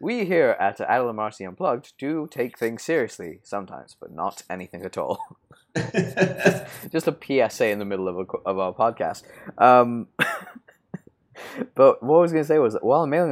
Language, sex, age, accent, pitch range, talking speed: English, male, 20-39, British, 100-130 Hz, 175 wpm